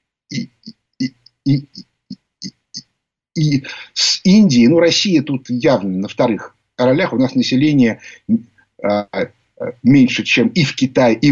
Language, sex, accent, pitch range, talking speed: Russian, male, native, 140-235 Hz, 145 wpm